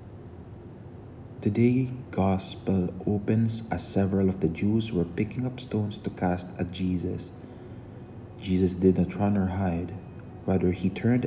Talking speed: 135 wpm